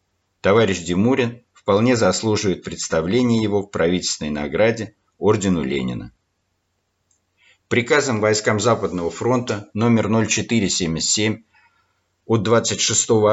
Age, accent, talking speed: 50-69, native, 85 wpm